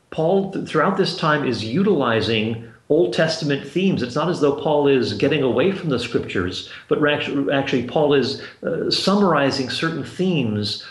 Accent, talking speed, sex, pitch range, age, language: American, 155 wpm, male, 125-160 Hz, 50-69, English